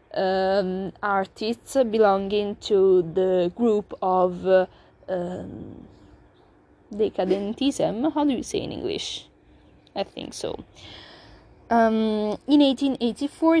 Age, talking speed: 20-39, 95 wpm